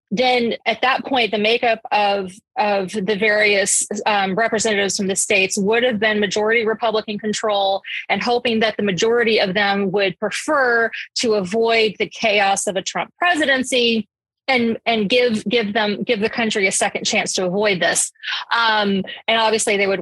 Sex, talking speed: female, 170 wpm